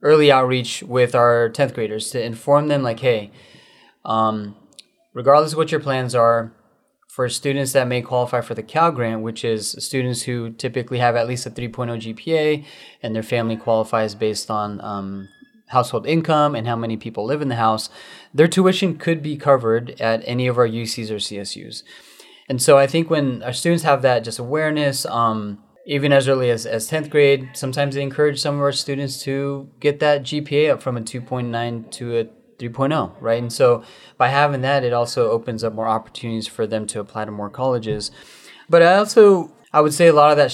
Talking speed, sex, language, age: 195 wpm, male, English, 20-39